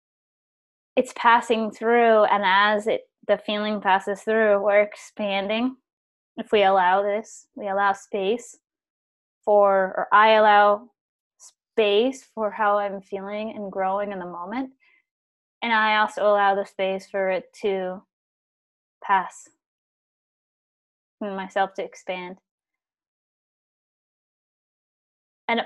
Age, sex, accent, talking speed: 20-39, female, American, 110 wpm